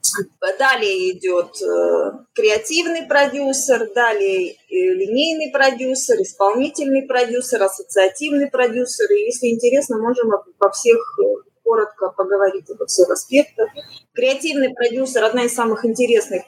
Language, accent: Russian, native